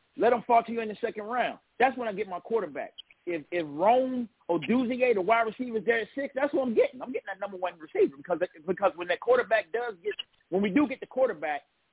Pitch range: 195-265 Hz